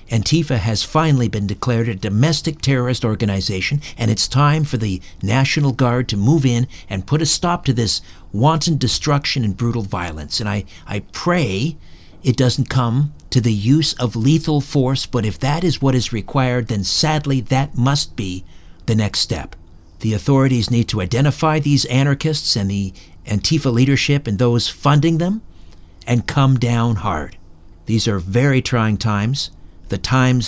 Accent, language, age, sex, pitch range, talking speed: American, English, 50-69, male, 95-135 Hz, 165 wpm